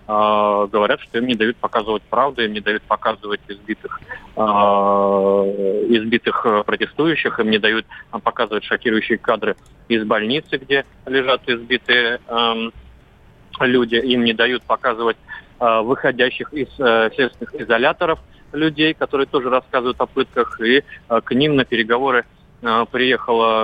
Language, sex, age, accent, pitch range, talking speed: Russian, male, 30-49, native, 110-130 Hz, 115 wpm